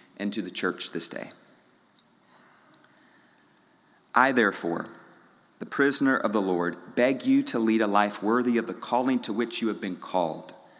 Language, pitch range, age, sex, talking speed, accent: English, 105-145 Hz, 40-59, male, 160 wpm, American